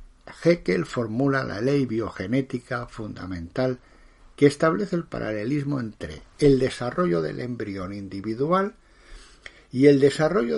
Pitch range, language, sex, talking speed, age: 105-140 Hz, Spanish, male, 110 wpm, 60-79